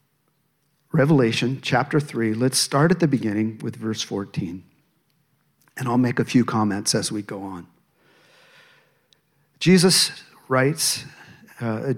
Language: English